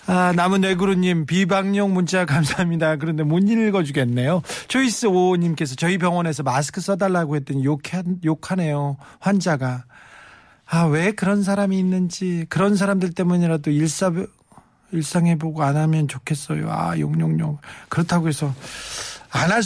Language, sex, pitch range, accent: Korean, male, 155-200 Hz, native